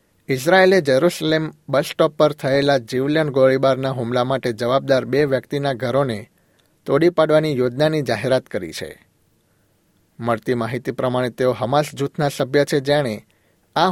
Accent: native